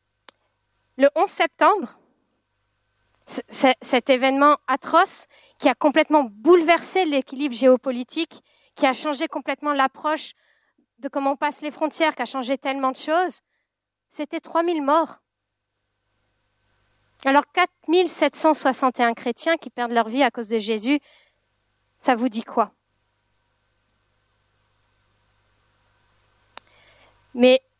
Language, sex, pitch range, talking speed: French, female, 230-295 Hz, 105 wpm